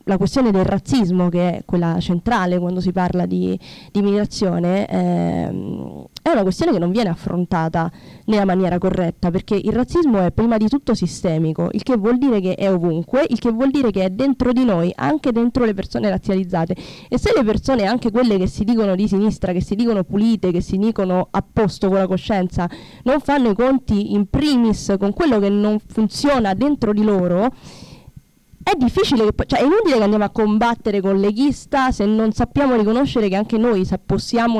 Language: Italian